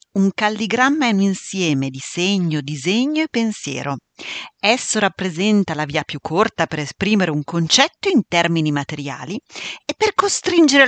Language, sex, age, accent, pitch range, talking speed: Italian, female, 40-59, native, 160-240 Hz, 145 wpm